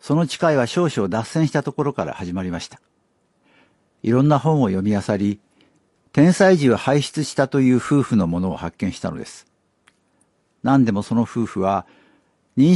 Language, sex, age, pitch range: Japanese, male, 60-79, 110-150 Hz